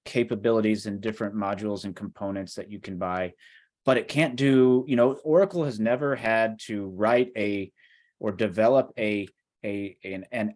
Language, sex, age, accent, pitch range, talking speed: English, male, 30-49, American, 105-125 Hz, 165 wpm